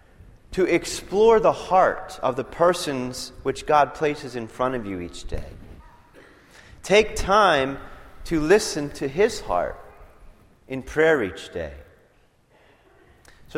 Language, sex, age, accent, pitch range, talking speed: English, male, 30-49, American, 105-160 Hz, 125 wpm